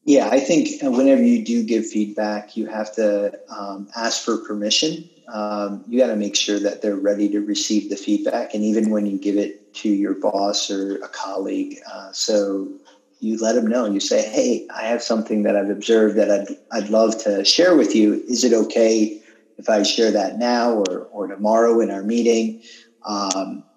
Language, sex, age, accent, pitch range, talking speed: English, male, 40-59, American, 105-125 Hz, 200 wpm